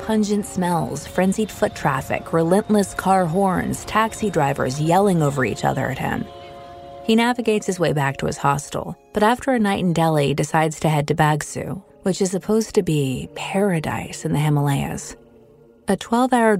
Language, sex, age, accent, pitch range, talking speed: English, female, 30-49, American, 155-200 Hz, 165 wpm